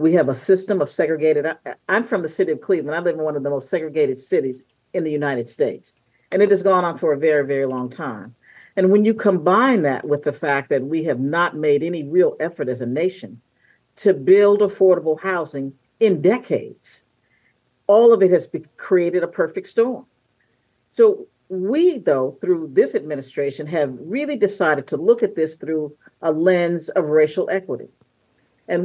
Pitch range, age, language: 145-195 Hz, 50-69, English